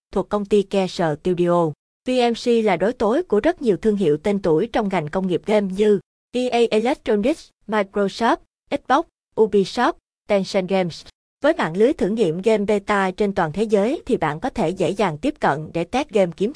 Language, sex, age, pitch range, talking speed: Vietnamese, female, 20-39, 180-230 Hz, 190 wpm